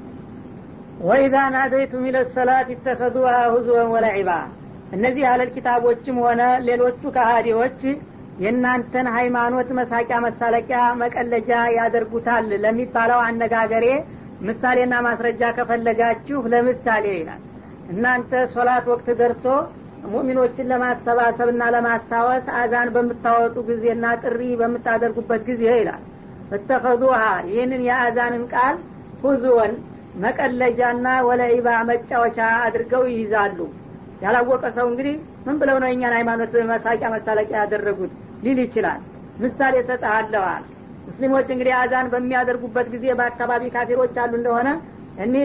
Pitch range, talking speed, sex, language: 235-255 Hz, 95 wpm, female, Amharic